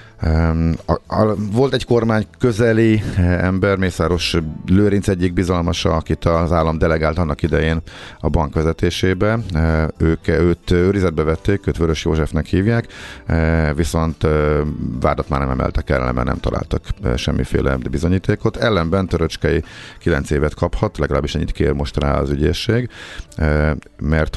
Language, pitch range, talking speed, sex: Hungarian, 75-95 Hz, 125 wpm, male